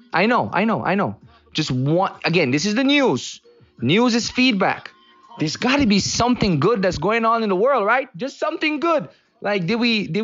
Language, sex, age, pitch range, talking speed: English, male, 20-39, 160-215 Hz, 210 wpm